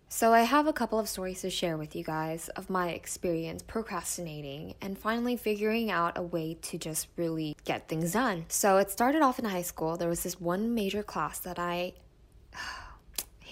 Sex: female